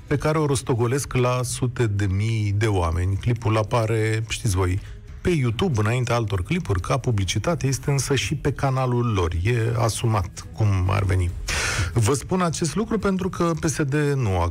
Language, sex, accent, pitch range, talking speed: Romanian, male, native, 100-140 Hz, 170 wpm